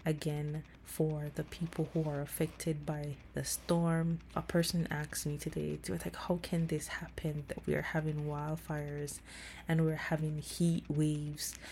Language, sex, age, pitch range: English, female, 20-39, 150-160 Hz